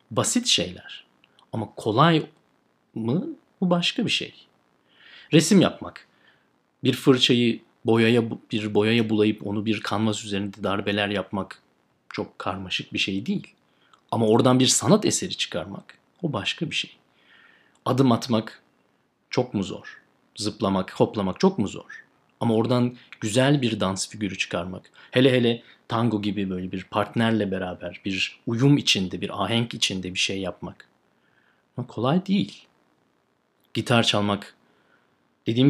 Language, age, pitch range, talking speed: Turkish, 40-59, 90-125 Hz, 130 wpm